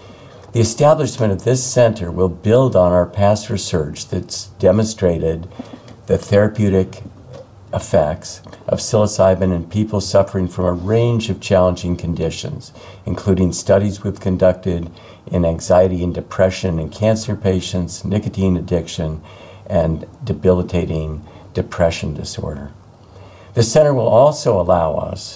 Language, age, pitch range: English, 50-69, 90-110 Hz